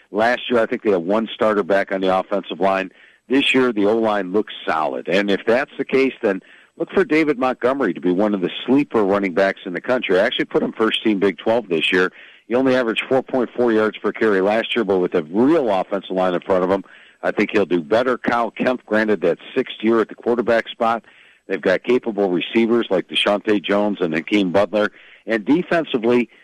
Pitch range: 100-120 Hz